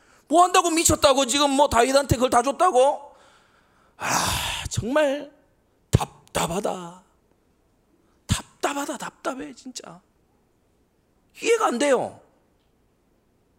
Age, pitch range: 40-59, 225-355 Hz